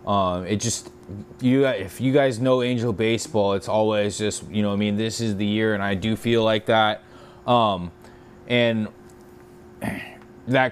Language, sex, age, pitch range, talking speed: English, male, 20-39, 105-125 Hz, 170 wpm